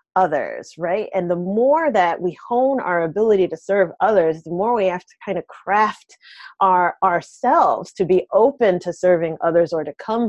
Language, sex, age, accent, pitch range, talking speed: English, female, 30-49, American, 175-220 Hz, 185 wpm